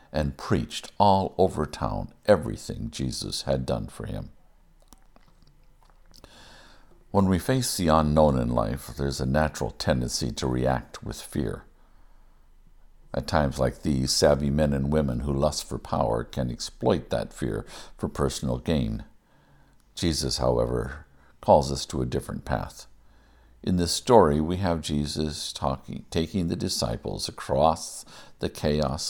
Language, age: English, 60-79